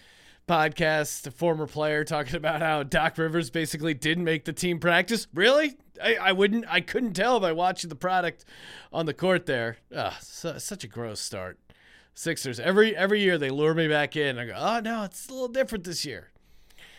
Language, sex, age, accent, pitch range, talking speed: English, male, 30-49, American, 140-195 Hz, 195 wpm